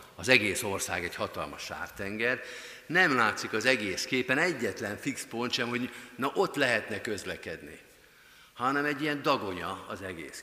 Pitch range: 100-130 Hz